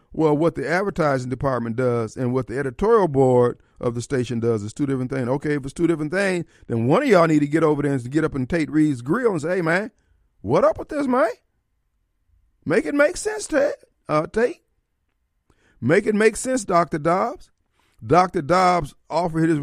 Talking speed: 200 wpm